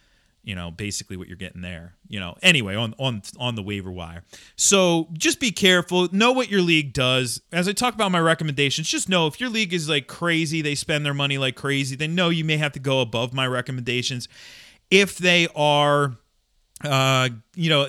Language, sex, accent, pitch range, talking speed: English, male, American, 120-165 Hz, 205 wpm